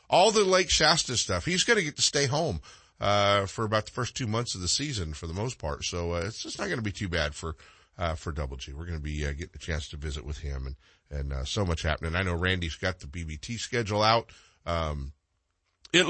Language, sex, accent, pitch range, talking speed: English, male, American, 80-105 Hz, 255 wpm